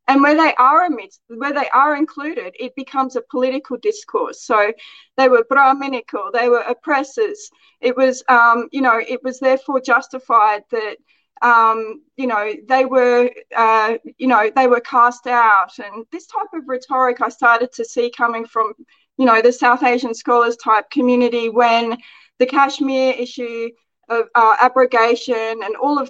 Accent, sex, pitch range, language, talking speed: Australian, female, 235-280 Hz, English, 165 wpm